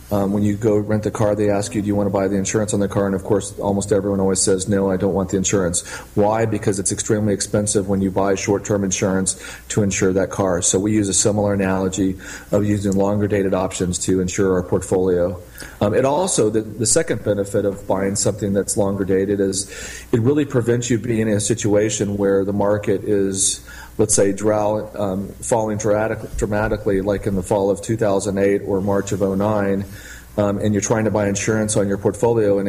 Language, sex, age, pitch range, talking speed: English, male, 40-59, 95-105 Hz, 210 wpm